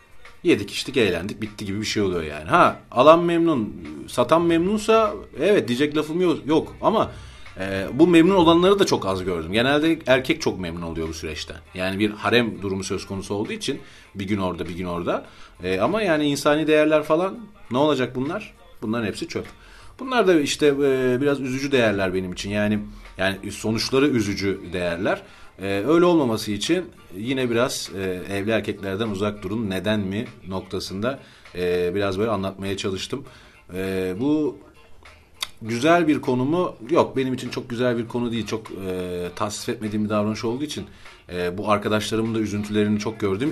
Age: 40-59